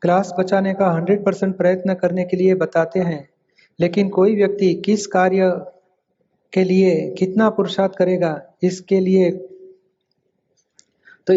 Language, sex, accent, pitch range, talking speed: Hindi, male, native, 180-210 Hz, 120 wpm